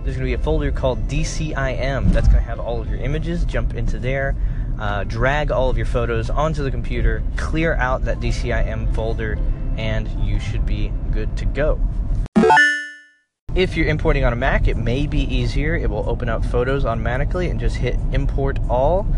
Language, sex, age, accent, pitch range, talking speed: English, male, 20-39, American, 115-140 Hz, 190 wpm